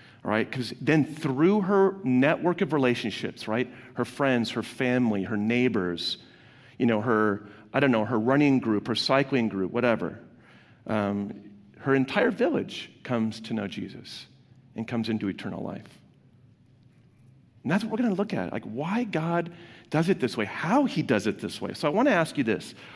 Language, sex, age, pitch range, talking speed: English, male, 40-59, 125-200 Hz, 180 wpm